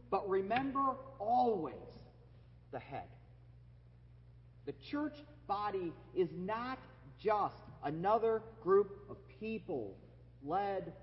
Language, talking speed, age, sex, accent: English, 85 wpm, 40-59, male, American